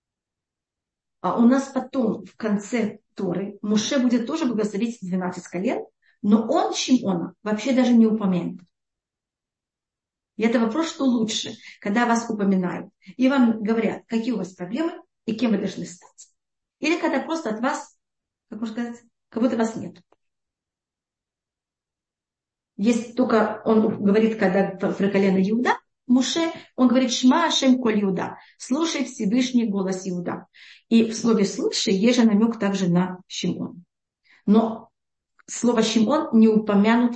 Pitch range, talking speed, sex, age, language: 200-255 Hz, 135 wpm, female, 40-59, Russian